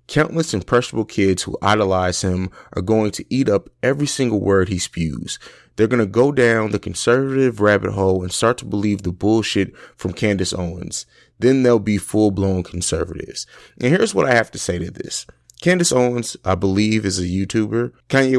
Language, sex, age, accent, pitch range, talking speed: English, male, 30-49, American, 95-115 Hz, 185 wpm